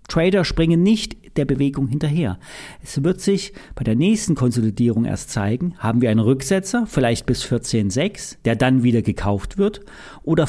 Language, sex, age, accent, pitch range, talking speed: German, male, 40-59, German, 135-195 Hz, 160 wpm